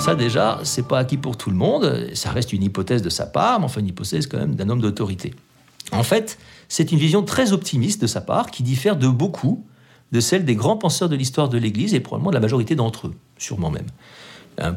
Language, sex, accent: French, male, French